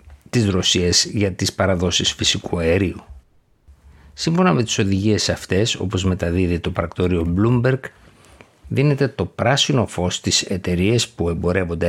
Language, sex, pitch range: Greek, male, 90-110 Hz